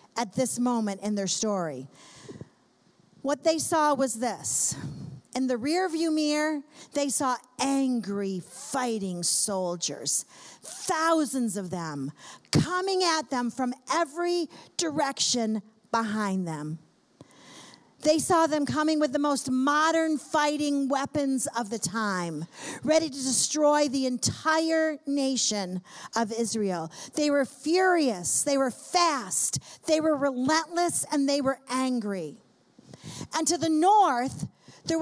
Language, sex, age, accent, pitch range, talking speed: English, female, 50-69, American, 230-330 Hz, 120 wpm